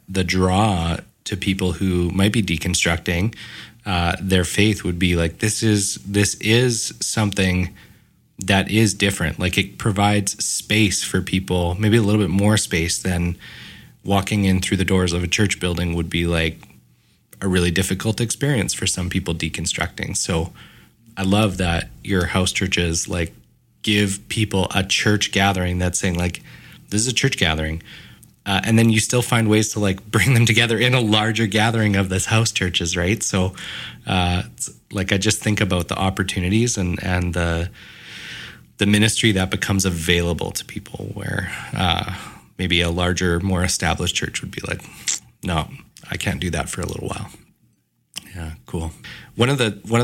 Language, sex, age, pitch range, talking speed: English, male, 30-49, 90-105 Hz, 170 wpm